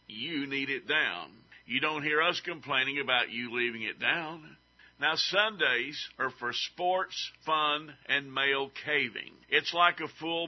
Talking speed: 155 wpm